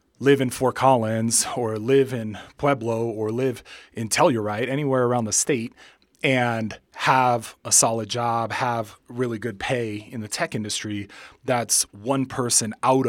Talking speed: 150 wpm